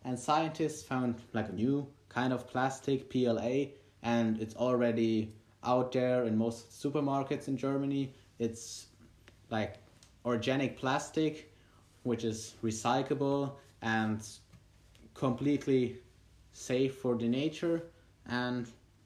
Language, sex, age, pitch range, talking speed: English, male, 30-49, 110-135 Hz, 105 wpm